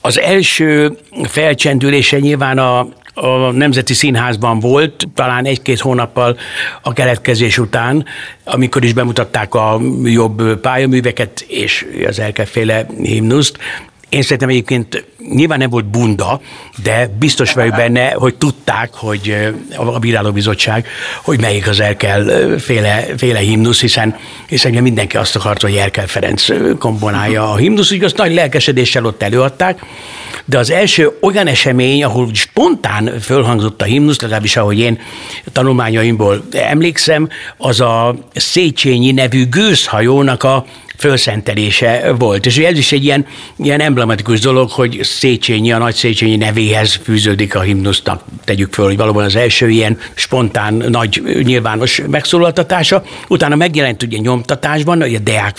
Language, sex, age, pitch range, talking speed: Hungarian, male, 60-79, 110-140 Hz, 135 wpm